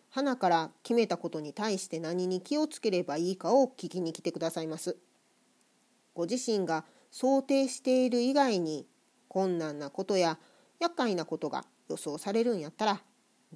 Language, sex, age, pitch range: Japanese, female, 40-59, 165-235 Hz